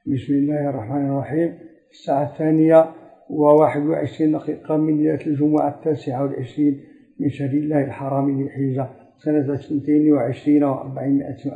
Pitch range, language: 140-155 Hz, Arabic